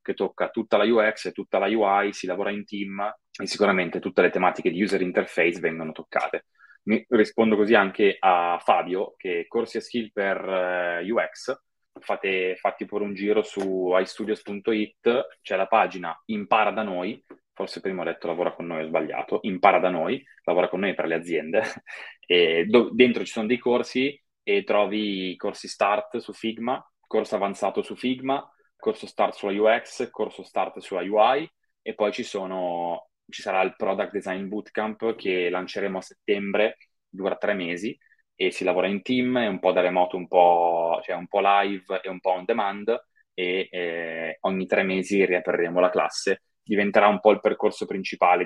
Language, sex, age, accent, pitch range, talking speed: Italian, male, 20-39, native, 90-115 Hz, 180 wpm